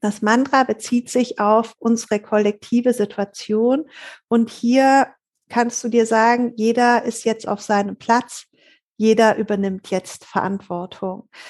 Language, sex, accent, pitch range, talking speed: German, female, German, 235-275 Hz, 125 wpm